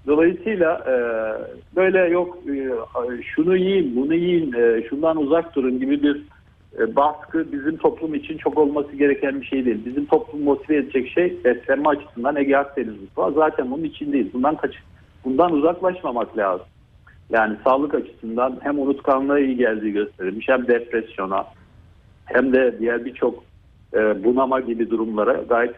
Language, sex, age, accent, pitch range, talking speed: Turkish, male, 60-79, native, 120-165 Hz, 145 wpm